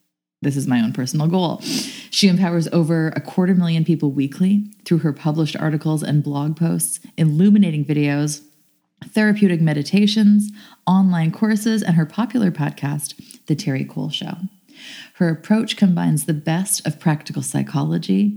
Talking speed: 140 wpm